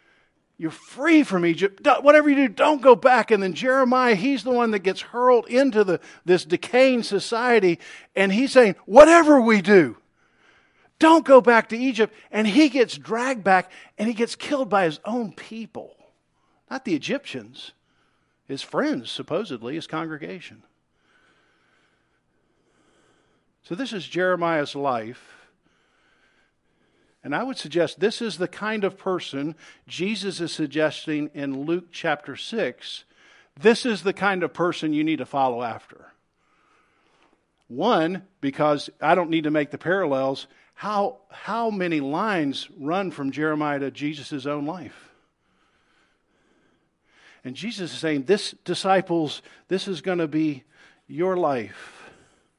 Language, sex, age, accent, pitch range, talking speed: English, male, 50-69, American, 155-240 Hz, 140 wpm